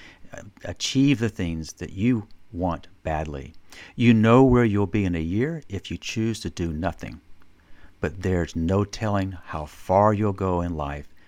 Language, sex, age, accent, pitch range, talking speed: English, male, 50-69, American, 85-100 Hz, 165 wpm